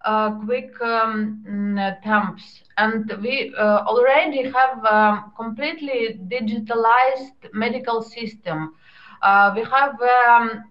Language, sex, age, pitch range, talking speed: English, female, 20-39, 210-245 Hz, 100 wpm